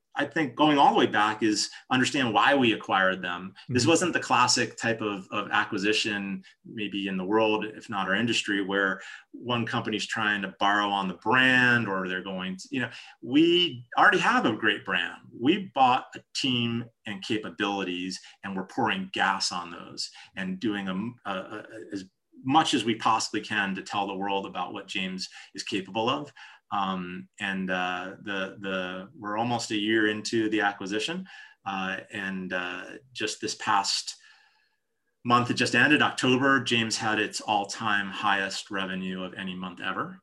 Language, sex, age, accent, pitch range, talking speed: English, male, 30-49, American, 95-115 Hz, 170 wpm